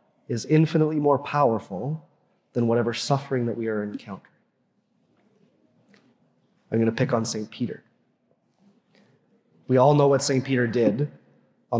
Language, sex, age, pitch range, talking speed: English, male, 30-49, 125-170 Hz, 130 wpm